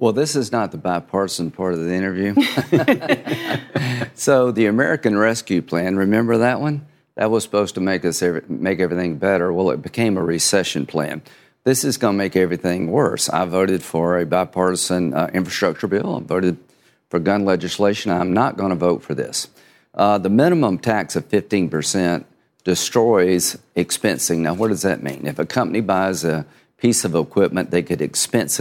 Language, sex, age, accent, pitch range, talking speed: English, male, 50-69, American, 85-105 Hz, 180 wpm